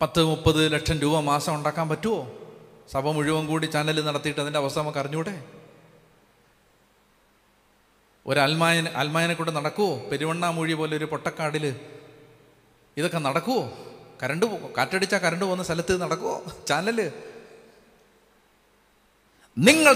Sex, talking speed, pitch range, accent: male, 100 wpm, 130-170 Hz, native